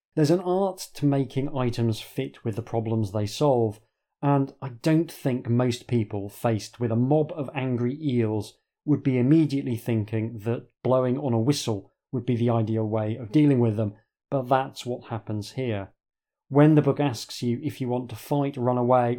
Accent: British